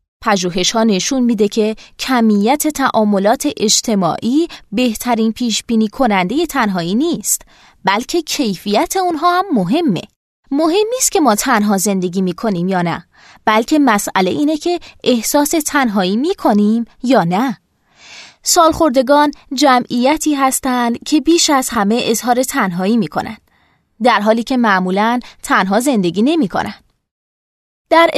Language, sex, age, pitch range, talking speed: Persian, female, 20-39, 210-285 Hz, 115 wpm